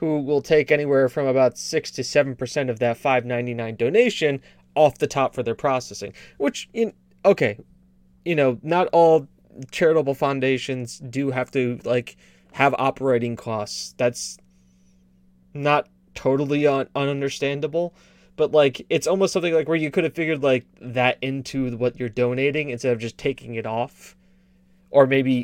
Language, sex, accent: English, male, American